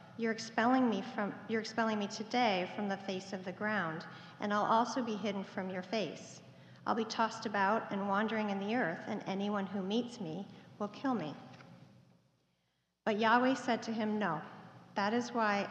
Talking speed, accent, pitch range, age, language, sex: 185 wpm, American, 185-225 Hz, 40-59, English, female